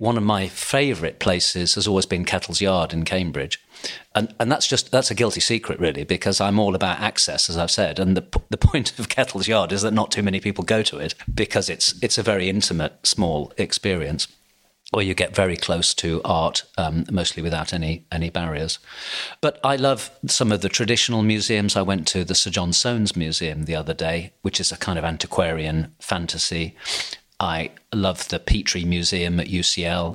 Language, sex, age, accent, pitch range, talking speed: English, male, 40-59, British, 85-105 Hz, 195 wpm